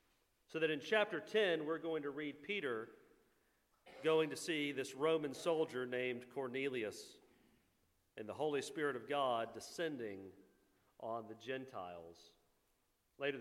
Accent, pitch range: American, 130-175 Hz